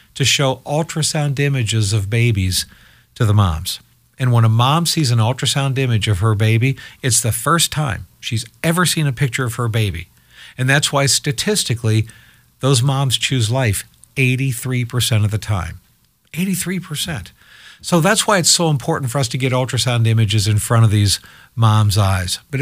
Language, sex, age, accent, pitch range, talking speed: English, male, 50-69, American, 110-140 Hz, 170 wpm